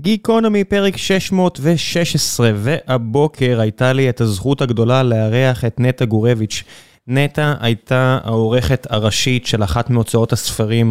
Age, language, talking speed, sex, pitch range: 20-39, Hebrew, 115 wpm, male, 115-140 Hz